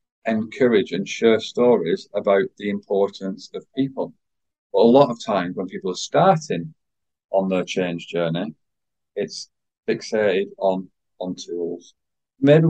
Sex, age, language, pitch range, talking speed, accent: male, 40-59, English, 115-170 Hz, 130 wpm, British